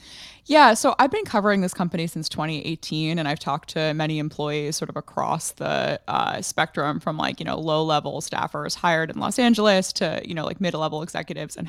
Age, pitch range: 20-39, 155-195 Hz